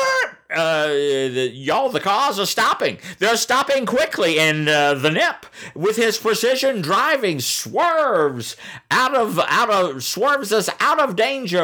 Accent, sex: American, male